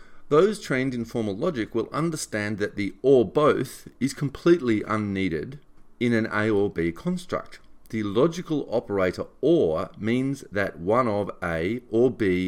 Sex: male